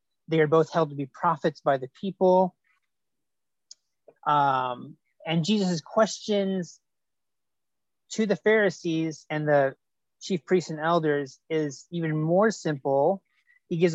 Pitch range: 145-175 Hz